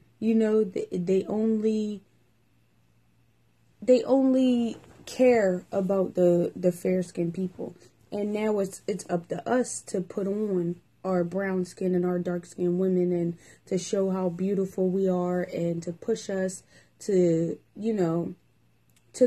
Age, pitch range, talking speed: 20-39, 180-215 Hz, 140 wpm